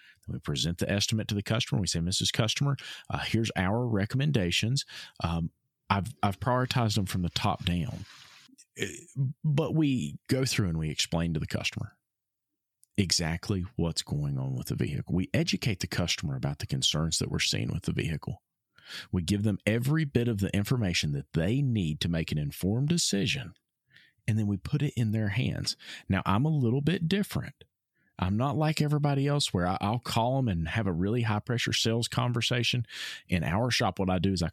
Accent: American